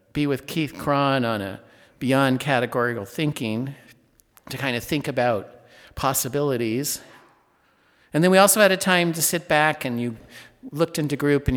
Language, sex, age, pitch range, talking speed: English, male, 50-69, 115-150 Hz, 160 wpm